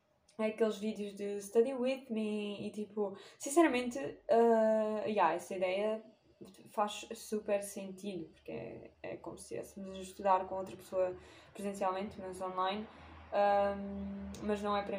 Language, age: Portuguese, 20-39